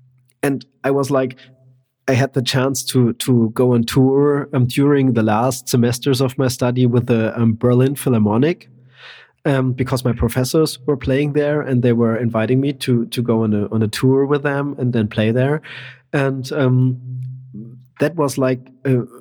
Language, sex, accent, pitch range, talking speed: English, male, German, 120-135 Hz, 180 wpm